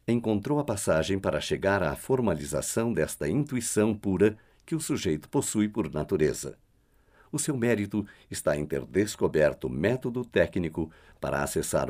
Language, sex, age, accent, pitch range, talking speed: Portuguese, male, 60-79, Brazilian, 85-130 Hz, 135 wpm